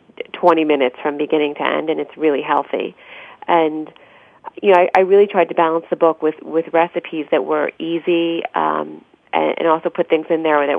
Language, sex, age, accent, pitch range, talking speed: English, female, 30-49, American, 155-175 Hz, 200 wpm